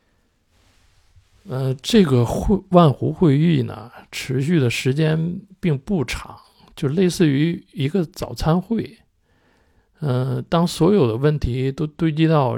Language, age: Chinese, 50-69